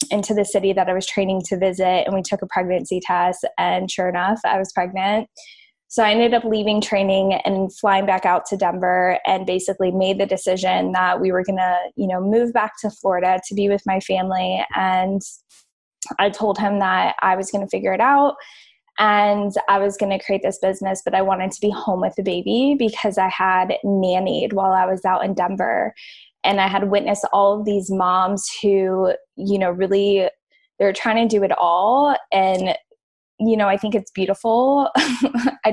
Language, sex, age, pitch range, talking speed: English, female, 10-29, 190-210 Hz, 200 wpm